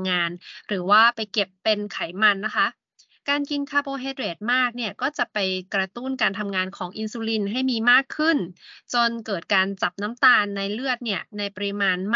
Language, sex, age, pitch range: Thai, female, 20-39, 200-270 Hz